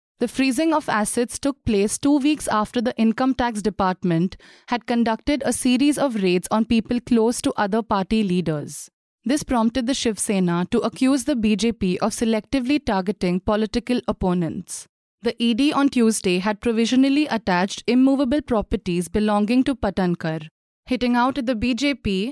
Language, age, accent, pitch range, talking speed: English, 20-39, Indian, 205-255 Hz, 155 wpm